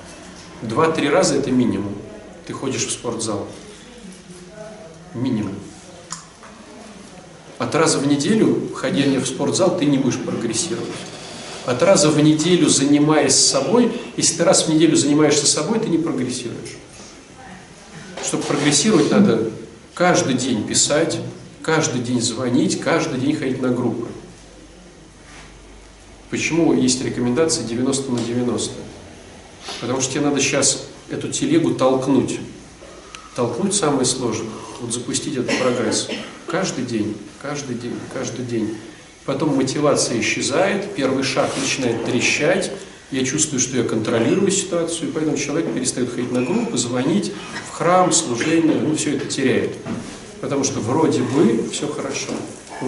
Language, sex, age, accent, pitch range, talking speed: Russian, male, 40-59, native, 120-160 Hz, 125 wpm